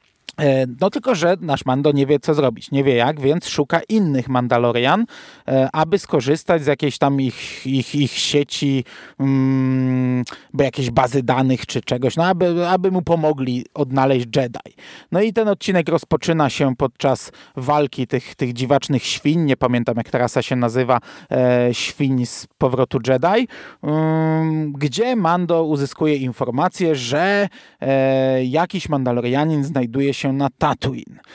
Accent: native